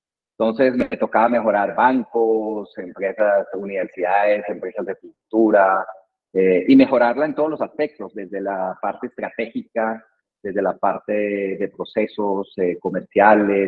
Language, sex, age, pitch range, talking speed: Spanish, male, 40-59, 105-150 Hz, 125 wpm